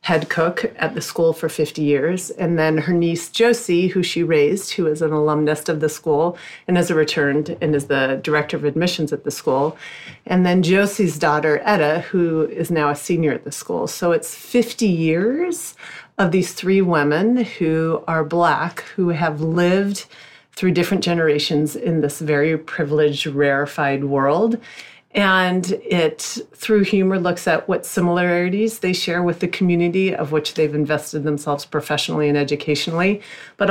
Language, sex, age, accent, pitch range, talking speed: English, female, 40-59, American, 155-185 Hz, 165 wpm